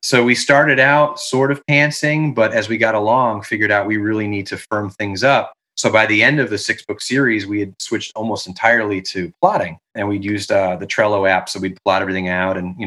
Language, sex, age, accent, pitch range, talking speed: English, male, 30-49, American, 100-130 Hz, 240 wpm